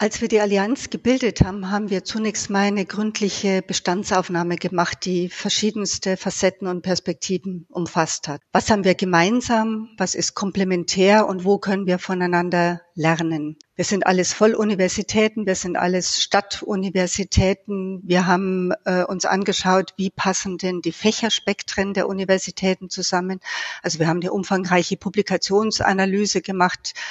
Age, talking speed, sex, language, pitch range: 60-79, 135 wpm, female, German, 180-210 Hz